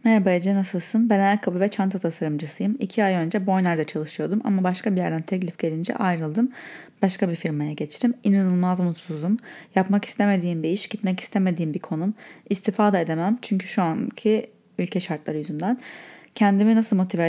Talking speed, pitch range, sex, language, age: 160 wpm, 175-215 Hz, female, Turkish, 30-49